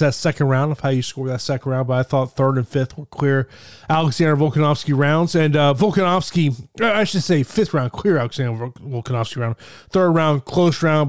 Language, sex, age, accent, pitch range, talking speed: English, male, 20-39, American, 130-165 Hz, 200 wpm